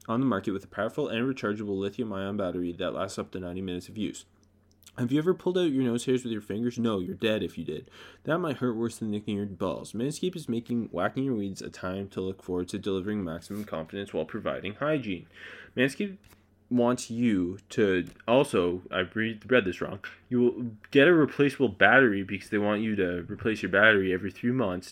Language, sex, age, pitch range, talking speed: English, male, 20-39, 95-125 Hz, 210 wpm